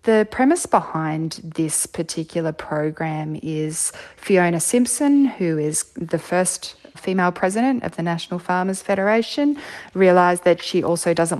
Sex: female